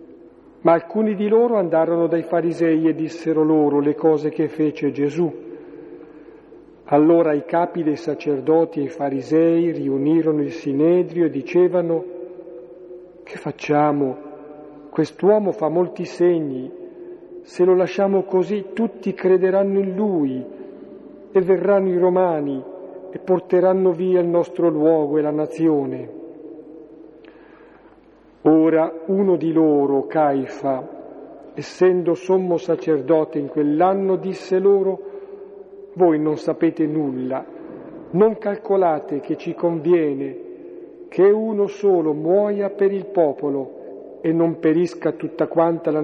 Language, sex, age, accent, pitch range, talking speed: Italian, male, 50-69, native, 155-190 Hz, 115 wpm